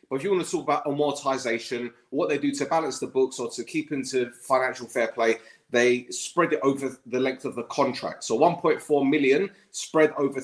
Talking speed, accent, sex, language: 205 wpm, British, male, English